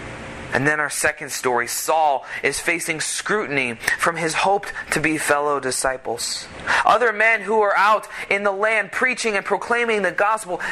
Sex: male